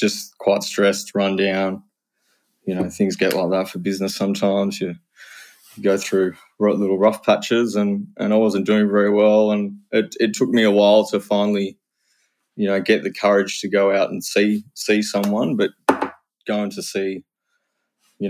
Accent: Australian